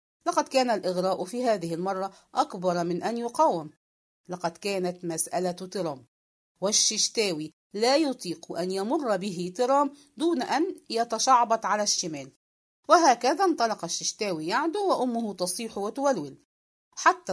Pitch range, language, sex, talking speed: 180-255 Hz, English, female, 120 wpm